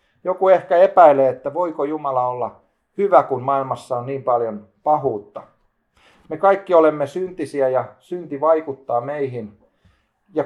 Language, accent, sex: Finnish, native, male